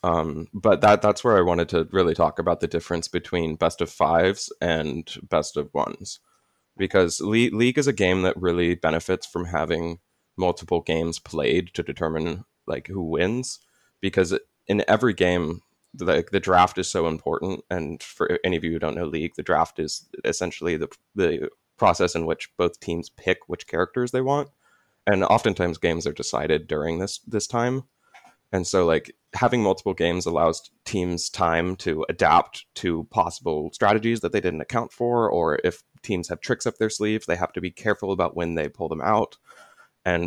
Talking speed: 185 wpm